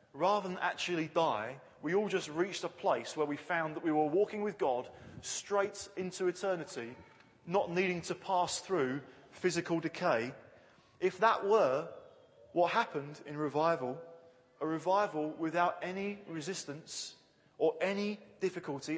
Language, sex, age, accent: English, male, 30-49, British